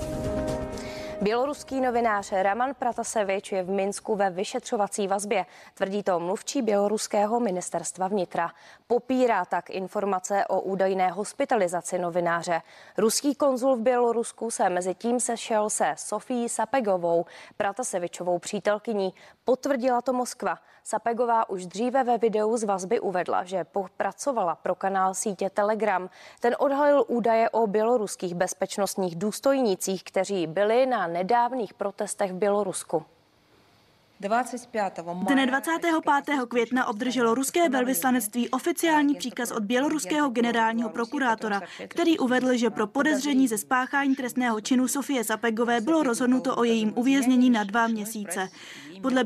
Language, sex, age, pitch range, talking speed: Czech, female, 20-39, 200-255 Hz, 120 wpm